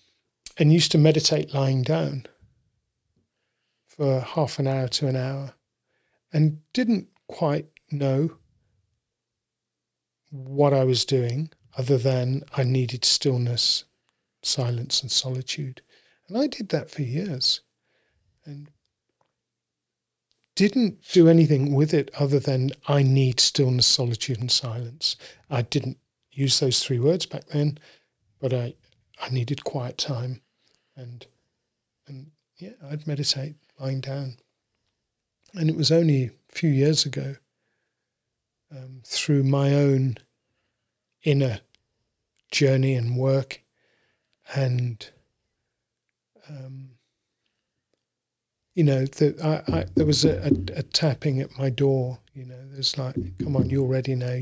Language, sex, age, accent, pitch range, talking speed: English, male, 40-59, British, 125-145 Hz, 120 wpm